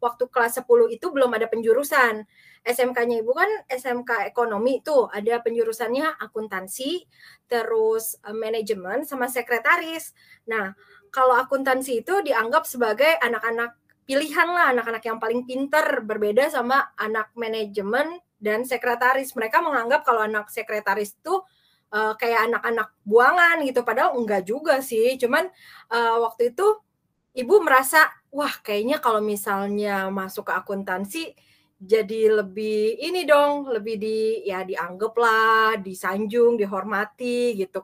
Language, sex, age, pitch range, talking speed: Indonesian, female, 20-39, 215-275 Hz, 120 wpm